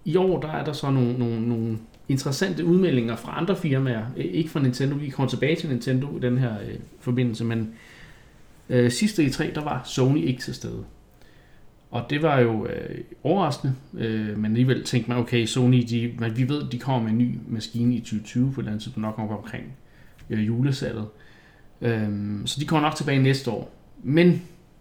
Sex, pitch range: male, 115-140 Hz